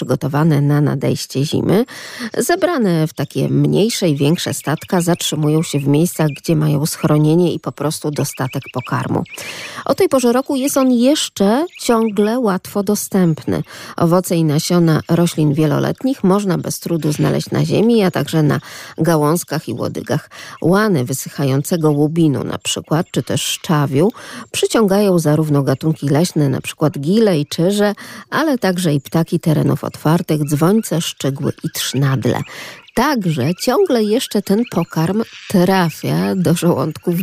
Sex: female